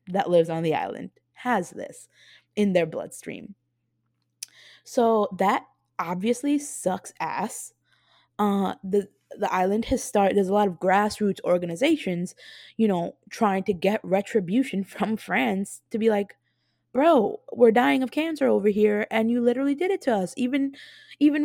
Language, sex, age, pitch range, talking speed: English, female, 20-39, 180-235 Hz, 150 wpm